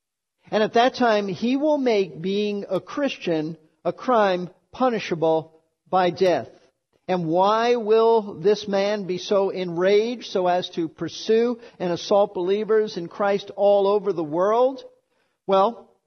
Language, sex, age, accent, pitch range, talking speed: English, male, 50-69, American, 170-225 Hz, 140 wpm